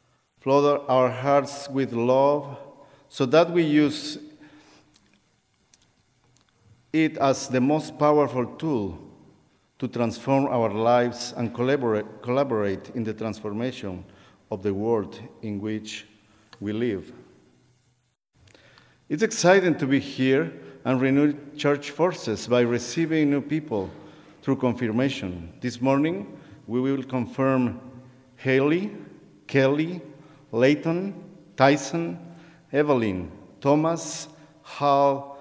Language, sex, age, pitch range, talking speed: English, male, 50-69, 120-145 Hz, 100 wpm